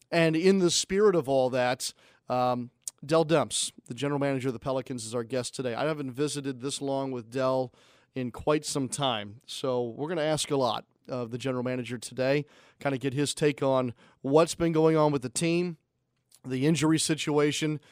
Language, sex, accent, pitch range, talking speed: English, male, American, 130-165 Hz, 200 wpm